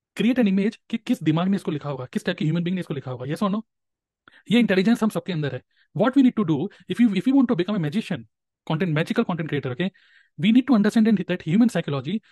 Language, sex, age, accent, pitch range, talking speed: Hindi, male, 30-49, native, 145-195 Hz, 210 wpm